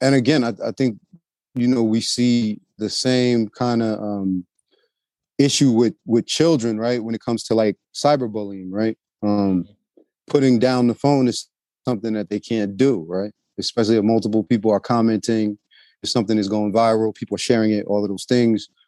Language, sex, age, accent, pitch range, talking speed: English, male, 30-49, American, 105-115 Hz, 180 wpm